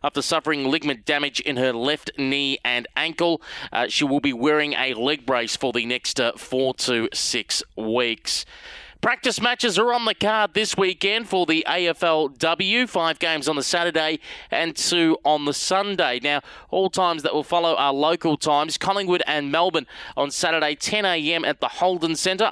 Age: 20-39